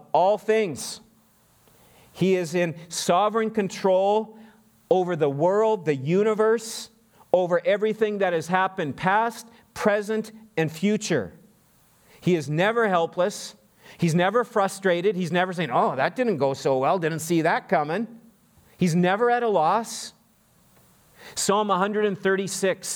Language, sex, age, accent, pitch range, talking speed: English, male, 40-59, American, 155-205 Hz, 125 wpm